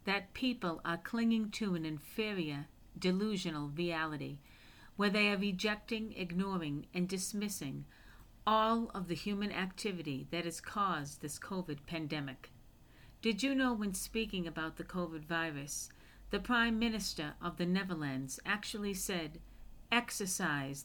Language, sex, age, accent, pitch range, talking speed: English, female, 50-69, American, 155-210 Hz, 130 wpm